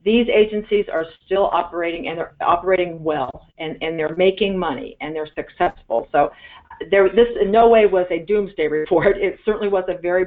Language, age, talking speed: English, 50-69, 180 wpm